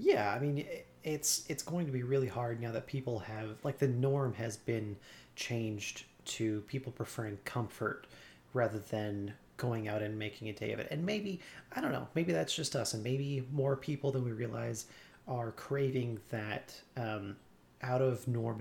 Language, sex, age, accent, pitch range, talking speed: English, male, 30-49, American, 110-135 Hz, 175 wpm